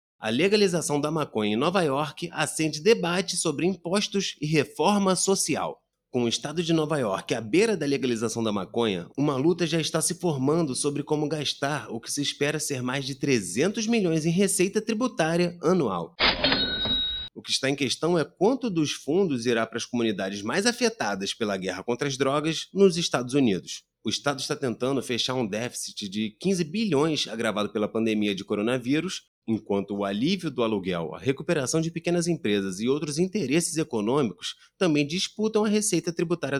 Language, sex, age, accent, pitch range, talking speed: Portuguese, male, 30-49, Brazilian, 120-170 Hz, 170 wpm